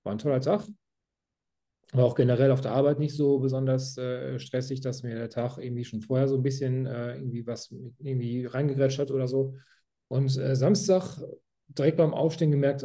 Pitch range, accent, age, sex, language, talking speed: 120-140 Hz, German, 40-59, male, German, 185 wpm